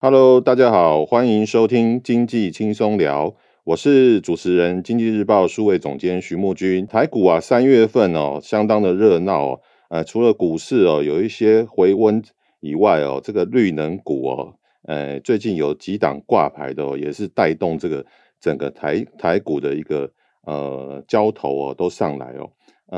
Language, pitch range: Chinese, 80-110 Hz